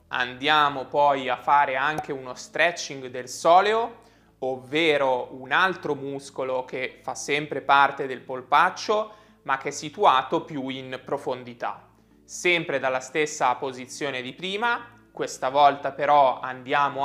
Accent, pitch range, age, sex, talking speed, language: native, 125-170 Hz, 20-39, male, 125 wpm, Italian